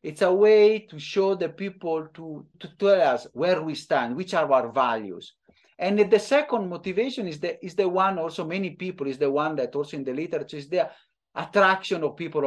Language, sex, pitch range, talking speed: English, male, 140-190 Hz, 205 wpm